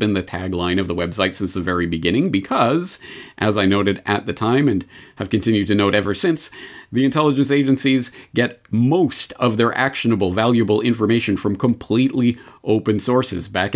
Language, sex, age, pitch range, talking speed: English, male, 40-59, 95-120 Hz, 170 wpm